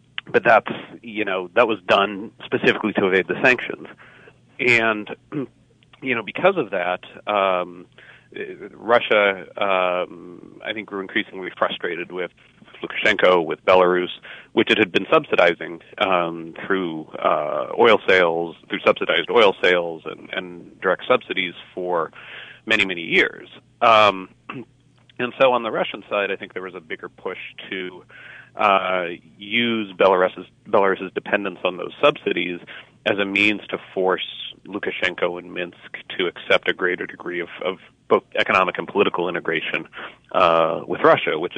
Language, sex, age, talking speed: English, male, 40-59, 145 wpm